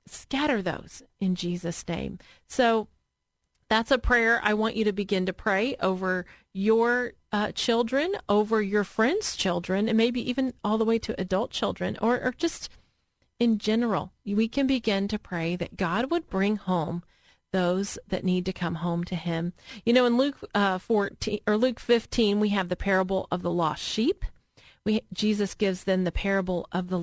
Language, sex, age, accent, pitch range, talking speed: English, female, 40-59, American, 190-240 Hz, 180 wpm